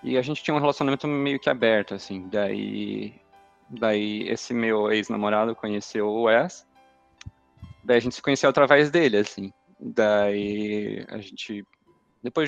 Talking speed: 145 wpm